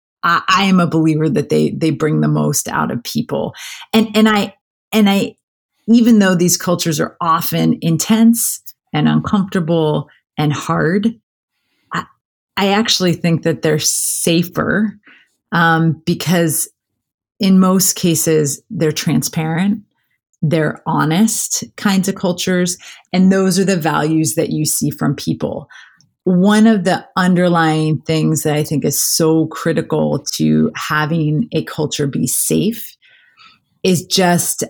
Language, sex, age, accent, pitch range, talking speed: English, female, 30-49, American, 155-190 Hz, 135 wpm